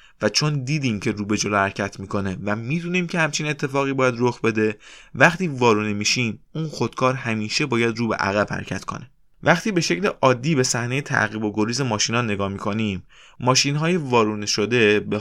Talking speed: 180 wpm